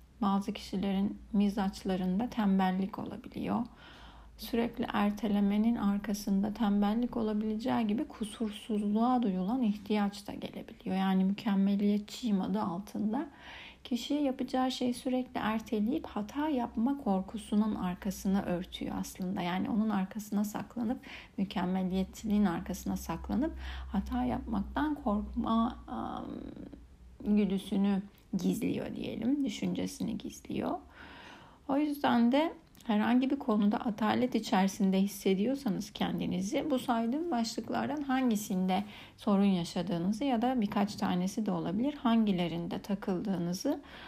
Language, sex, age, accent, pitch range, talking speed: Turkish, female, 60-79, native, 195-240 Hz, 95 wpm